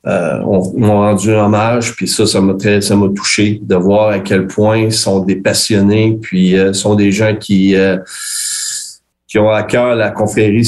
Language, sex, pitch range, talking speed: French, male, 110-125 Hz, 200 wpm